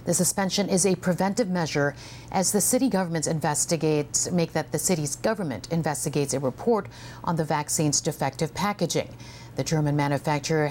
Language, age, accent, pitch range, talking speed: English, 50-69, American, 135-170 Hz, 150 wpm